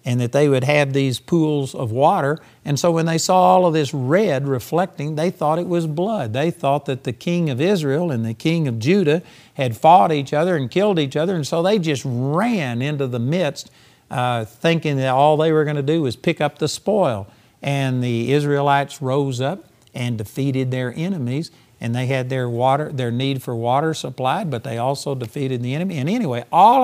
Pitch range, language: 130-170 Hz, English